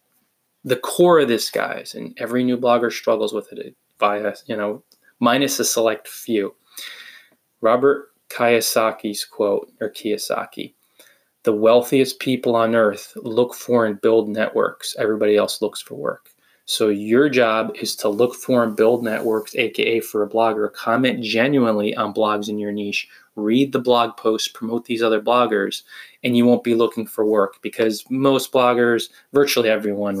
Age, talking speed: 20-39, 160 wpm